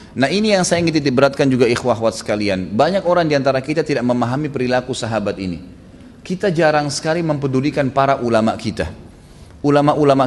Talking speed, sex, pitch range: 150 wpm, male, 115-160 Hz